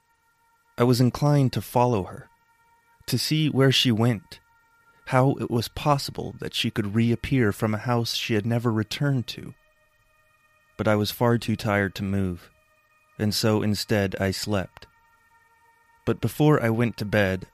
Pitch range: 100-135 Hz